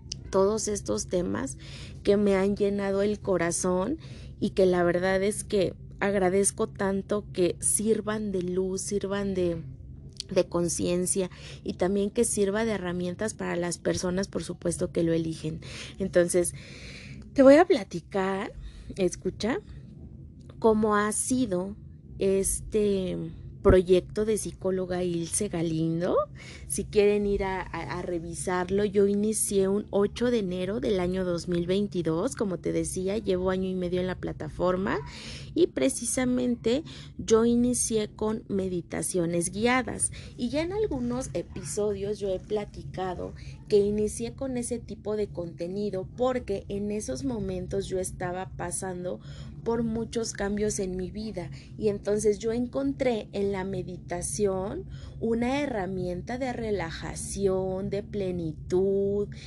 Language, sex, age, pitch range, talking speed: Spanish, female, 30-49, 175-215 Hz, 130 wpm